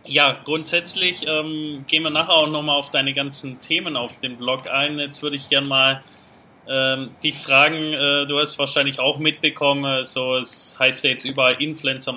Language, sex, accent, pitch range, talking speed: German, male, German, 125-145 Hz, 185 wpm